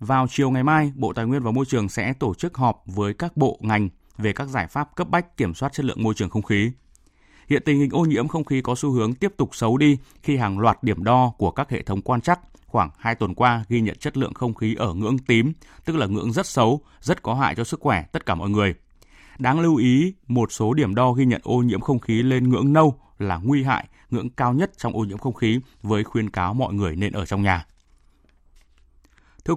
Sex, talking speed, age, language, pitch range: male, 250 wpm, 20-39, Vietnamese, 100-135 Hz